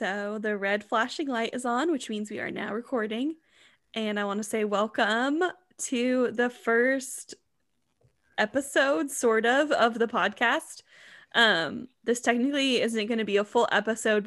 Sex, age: female, 10-29